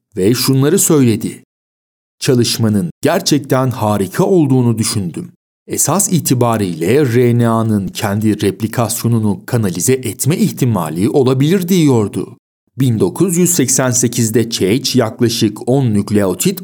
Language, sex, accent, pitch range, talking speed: Turkish, male, native, 110-150 Hz, 85 wpm